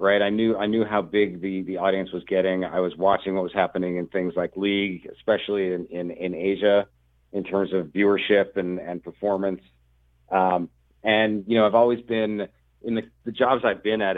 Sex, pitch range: male, 90-100 Hz